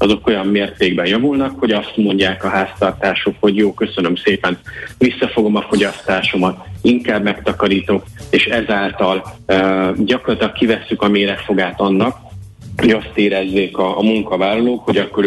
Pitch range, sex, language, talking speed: 95-110 Hz, male, Hungarian, 135 wpm